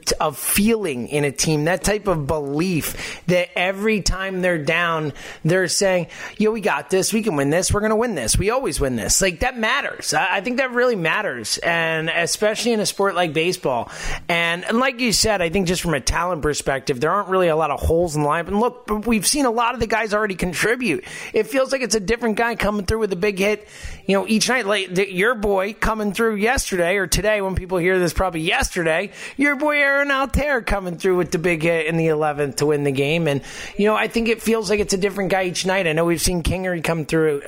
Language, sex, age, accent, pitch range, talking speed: English, male, 30-49, American, 160-210 Hz, 240 wpm